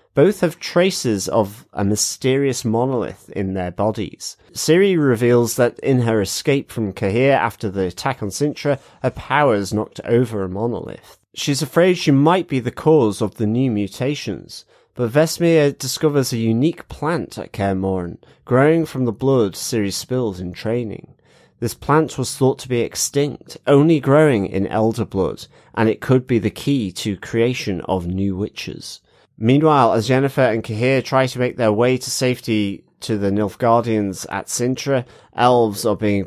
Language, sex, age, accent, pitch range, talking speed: English, male, 30-49, British, 105-135 Hz, 165 wpm